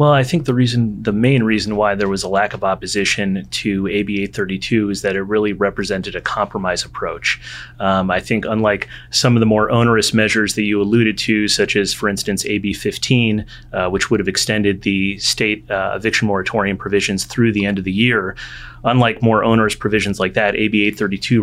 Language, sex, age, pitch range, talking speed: English, male, 30-49, 100-110 Hz, 200 wpm